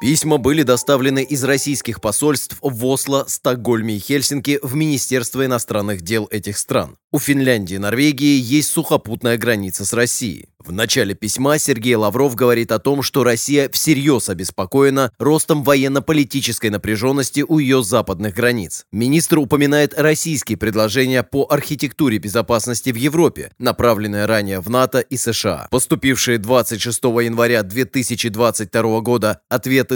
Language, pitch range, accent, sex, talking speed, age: Russian, 115-145 Hz, native, male, 130 wpm, 20-39